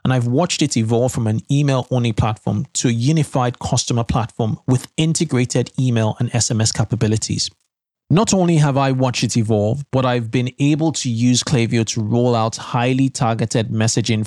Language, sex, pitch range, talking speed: English, male, 110-130 Hz, 170 wpm